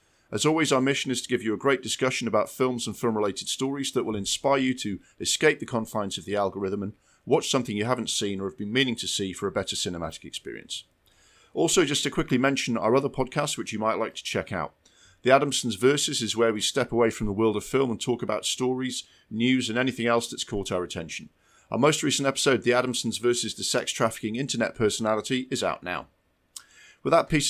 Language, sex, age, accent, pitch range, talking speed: English, male, 40-59, British, 105-130 Hz, 220 wpm